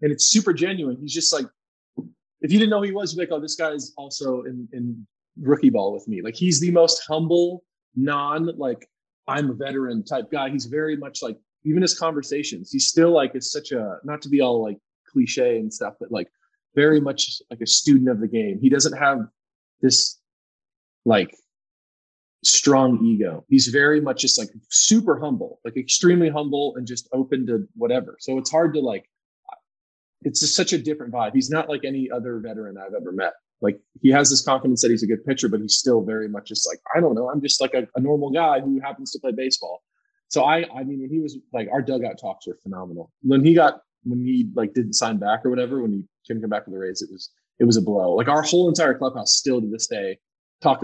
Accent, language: American, English